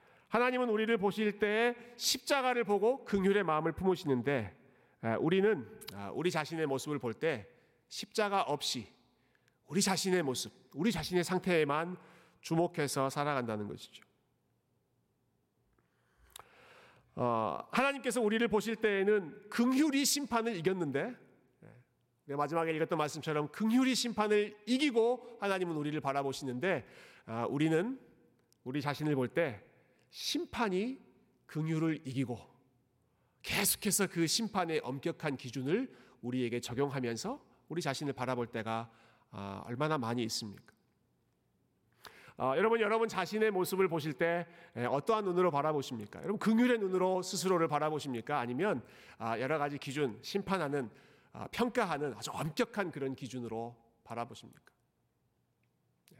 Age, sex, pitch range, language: 40-59, male, 130-210 Hz, Korean